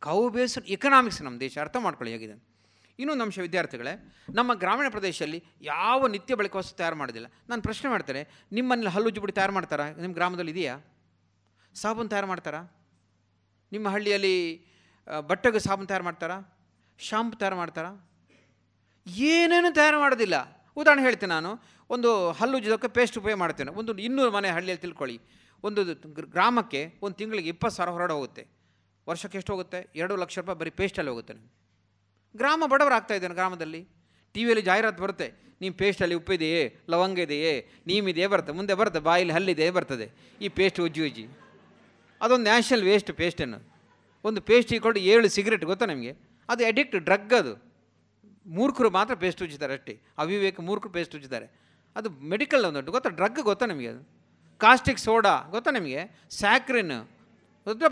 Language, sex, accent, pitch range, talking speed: Kannada, male, native, 160-220 Hz, 140 wpm